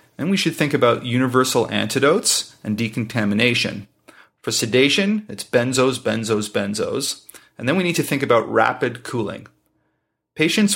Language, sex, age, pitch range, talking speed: English, male, 30-49, 110-140 Hz, 140 wpm